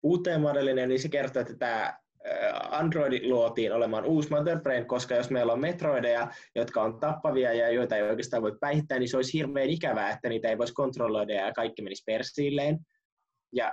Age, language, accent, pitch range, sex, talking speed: 20-39, Finnish, native, 110-135 Hz, male, 175 wpm